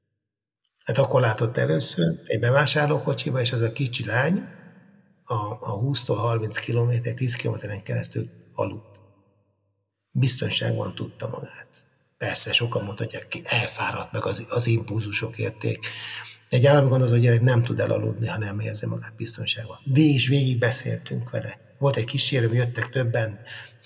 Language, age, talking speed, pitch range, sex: Hungarian, 60-79, 135 wpm, 115-135 Hz, male